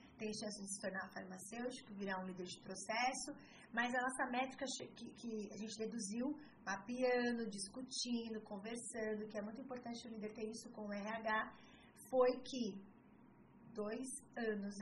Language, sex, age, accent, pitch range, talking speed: Portuguese, female, 20-39, Brazilian, 205-250 Hz, 155 wpm